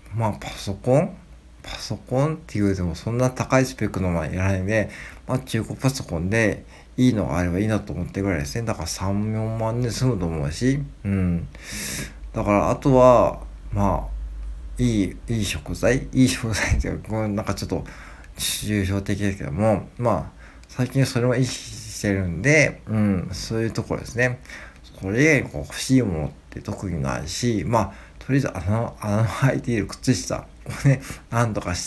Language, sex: Japanese, male